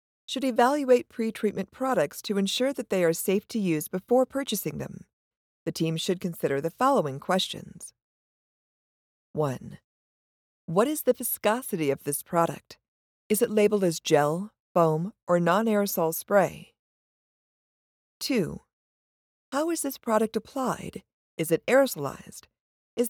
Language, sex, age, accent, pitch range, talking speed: English, female, 40-59, American, 170-245 Hz, 125 wpm